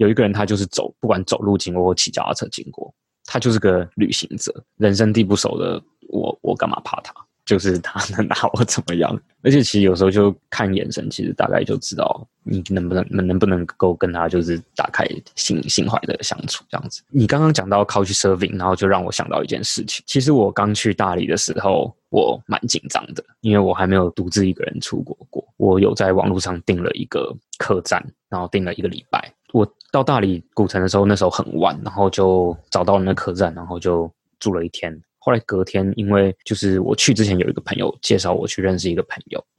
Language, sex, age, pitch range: English, male, 20-39, 90-105 Hz